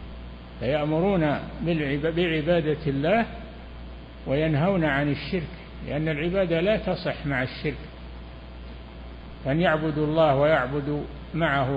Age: 60-79